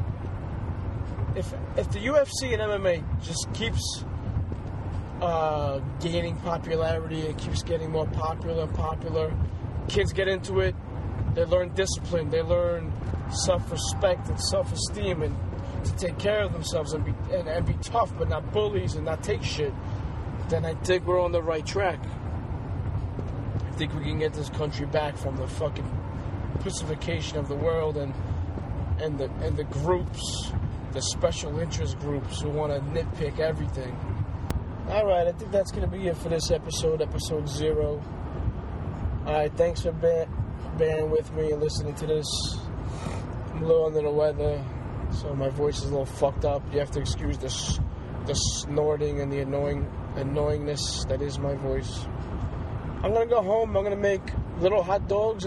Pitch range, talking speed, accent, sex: 95-150 Hz, 160 wpm, American, male